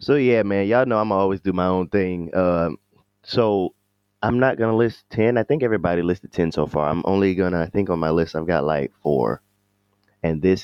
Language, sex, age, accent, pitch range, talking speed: English, male, 20-39, American, 85-105 Hz, 230 wpm